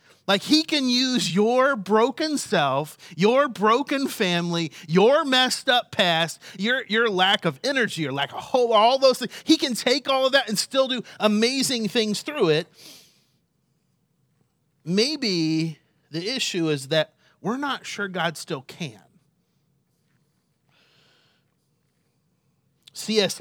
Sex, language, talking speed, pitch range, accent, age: male, English, 130 wpm, 150-205 Hz, American, 30-49